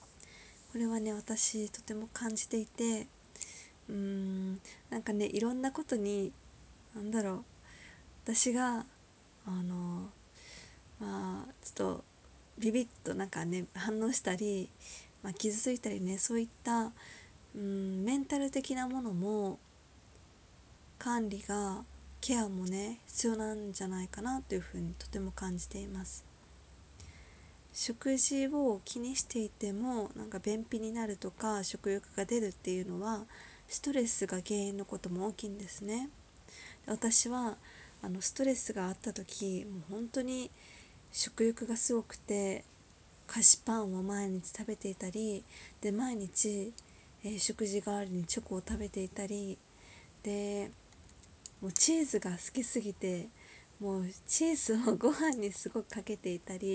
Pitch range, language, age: 190-230 Hz, Japanese, 20-39